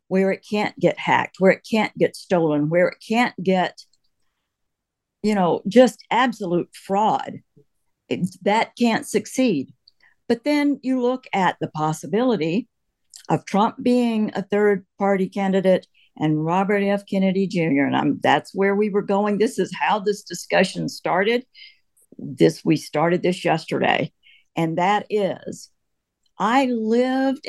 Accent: American